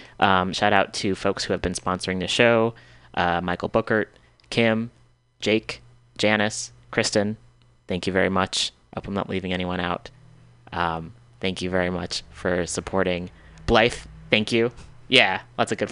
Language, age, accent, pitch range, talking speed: English, 20-39, American, 95-120 Hz, 160 wpm